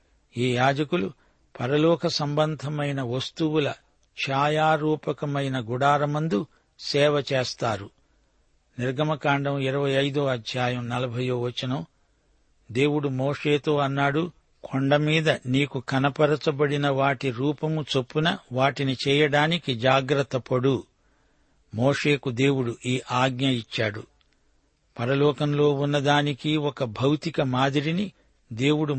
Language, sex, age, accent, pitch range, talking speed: Telugu, male, 60-79, native, 125-150 Hz, 80 wpm